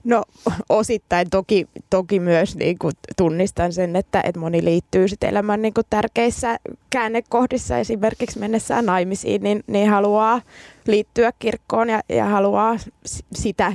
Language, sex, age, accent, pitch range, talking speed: Finnish, female, 20-39, native, 185-215 Hz, 130 wpm